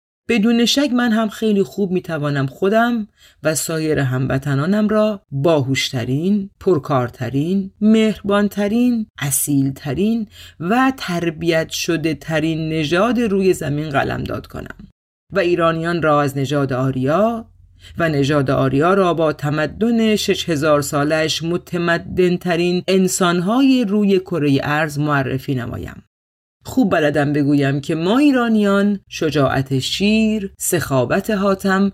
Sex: female